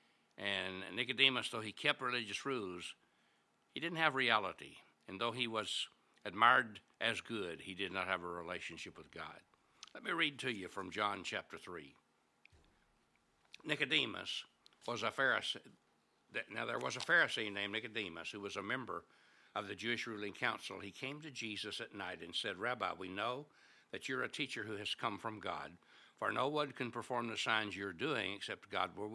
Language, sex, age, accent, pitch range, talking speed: English, male, 60-79, American, 95-115 Hz, 180 wpm